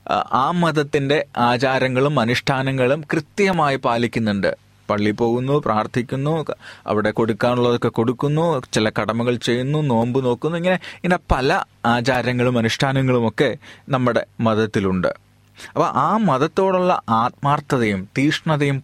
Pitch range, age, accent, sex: 115-165 Hz, 30-49, native, male